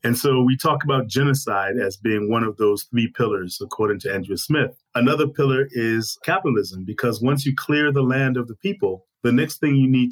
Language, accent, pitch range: English, American, 110-130 Hz